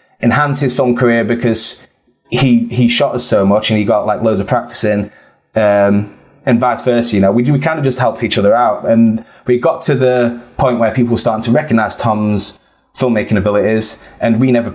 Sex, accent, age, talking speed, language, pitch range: male, British, 20-39, 210 wpm, English, 110-125 Hz